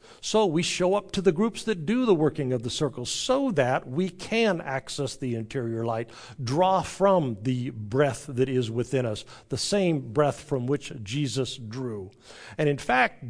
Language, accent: English, American